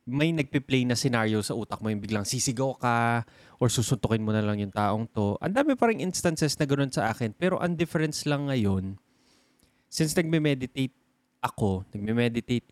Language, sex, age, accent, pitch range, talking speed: Filipino, male, 20-39, native, 110-145 Hz, 170 wpm